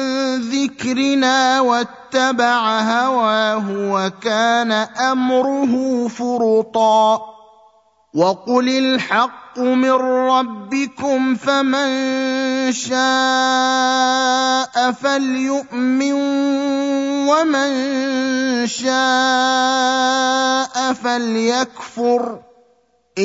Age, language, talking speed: 30-49, Arabic, 40 wpm